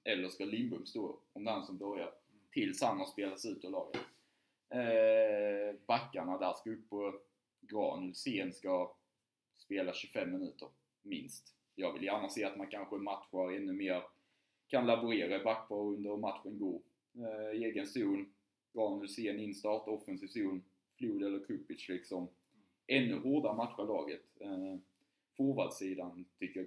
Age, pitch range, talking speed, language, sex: 20-39, 95-120 Hz, 150 wpm, Swedish, male